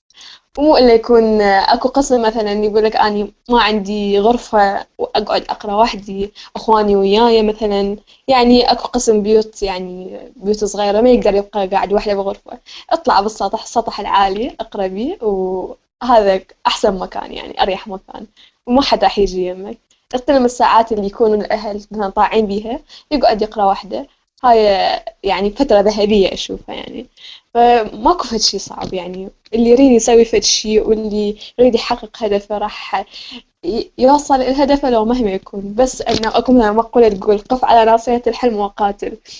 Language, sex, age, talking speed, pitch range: Arabic, female, 10-29, 145 wpm, 205-240 Hz